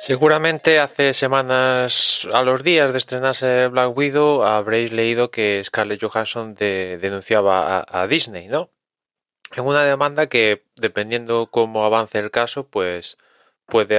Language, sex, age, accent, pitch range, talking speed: Spanish, male, 20-39, Spanish, 110-140 Hz, 135 wpm